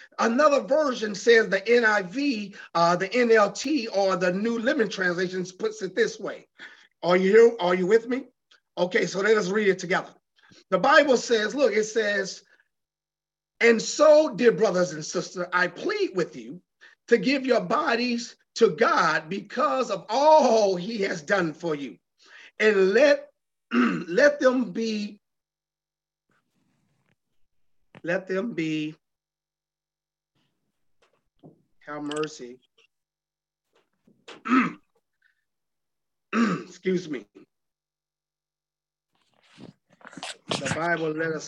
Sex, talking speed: male, 110 wpm